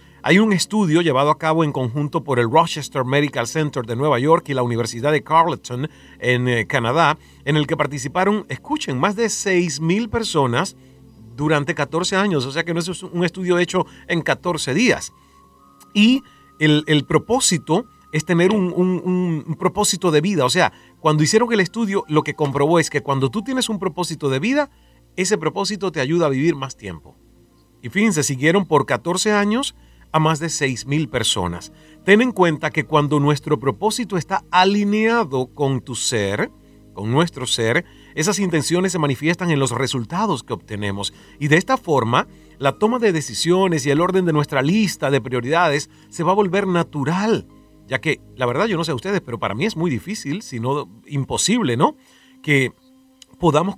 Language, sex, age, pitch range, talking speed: English, male, 40-59, 140-185 Hz, 180 wpm